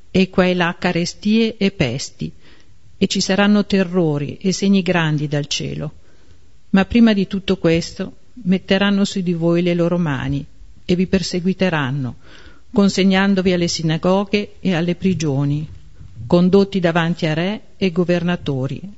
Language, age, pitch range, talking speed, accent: Italian, 50-69, 150-195 Hz, 135 wpm, native